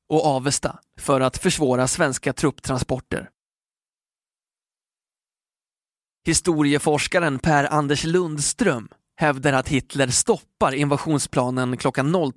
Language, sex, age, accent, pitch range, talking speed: Swedish, male, 20-39, native, 130-160 Hz, 80 wpm